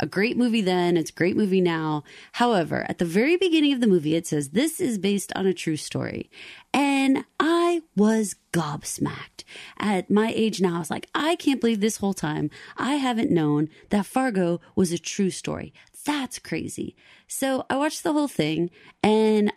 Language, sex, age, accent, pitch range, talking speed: English, female, 30-49, American, 175-290 Hz, 185 wpm